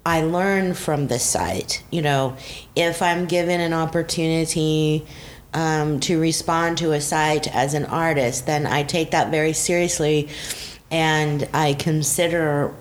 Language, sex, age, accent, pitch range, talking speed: English, female, 30-49, American, 145-170 Hz, 140 wpm